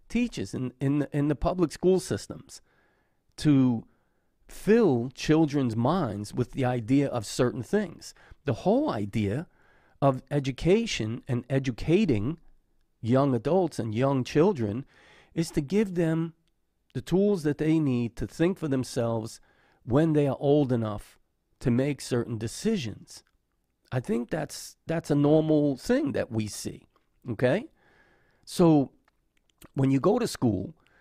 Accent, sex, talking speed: American, male, 135 wpm